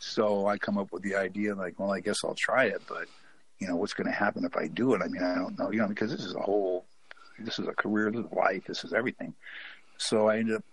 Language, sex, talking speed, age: English, male, 280 wpm, 60-79